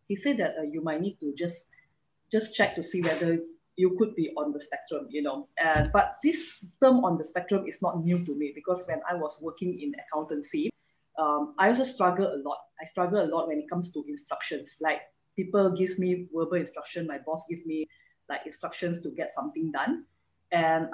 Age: 20-39